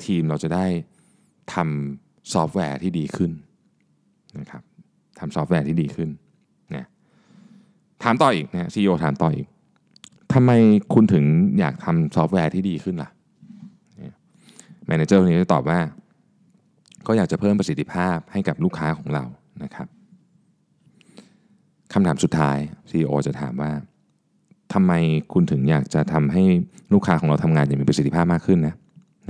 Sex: male